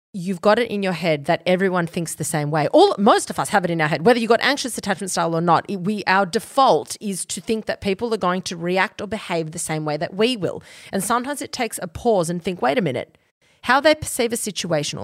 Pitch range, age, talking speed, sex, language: 170-245 Hz, 30-49, 265 wpm, female, English